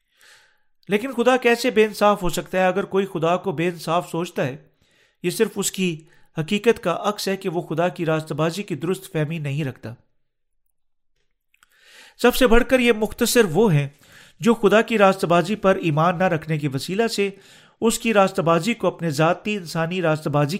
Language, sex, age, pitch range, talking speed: Urdu, male, 40-59, 160-200 Hz, 190 wpm